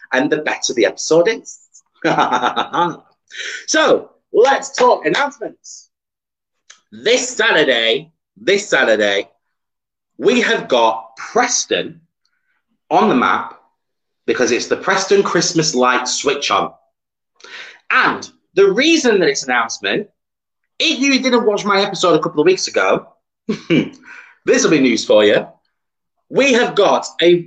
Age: 30-49